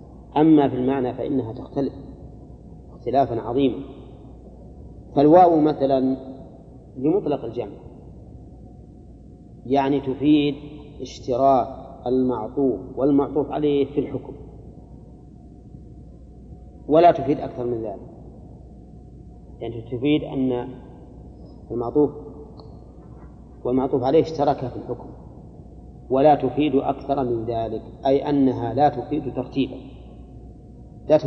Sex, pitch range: male, 125-145 Hz